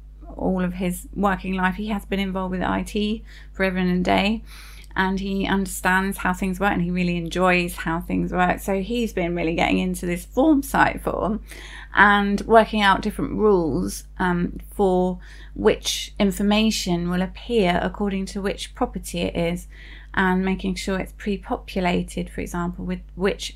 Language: English